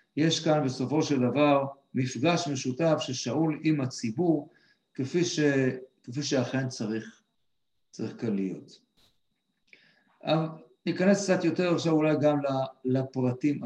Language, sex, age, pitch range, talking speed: Hebrew, male, 50-69, 120-155 Hz, 115 wpm